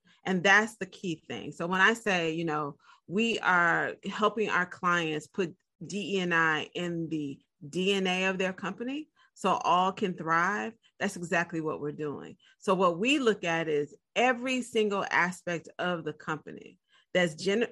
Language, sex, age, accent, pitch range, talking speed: English, female, 40-59, American, 165-220 Hz, 160 wpm